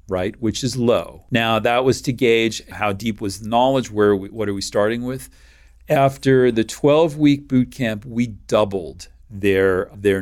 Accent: American